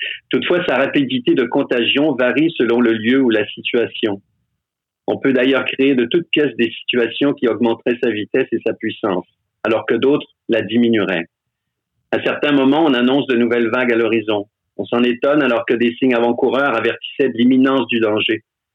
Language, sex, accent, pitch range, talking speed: French, male, French, 115-145 Hz, 180 wpm